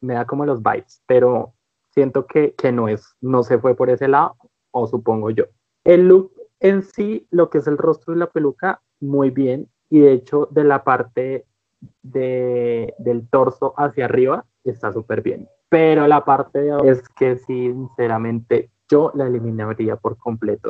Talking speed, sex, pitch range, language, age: 175 wpm, male, 120-145 Hz, Spanish, 20-39